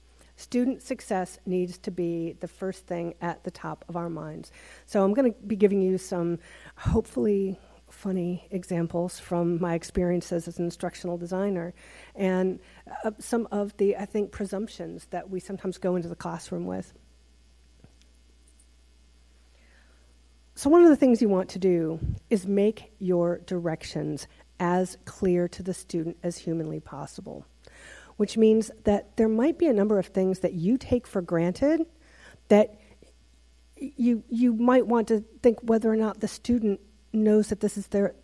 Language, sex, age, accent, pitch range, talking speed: English, female, 50-69, American, 170-210 Hz, 155 wpm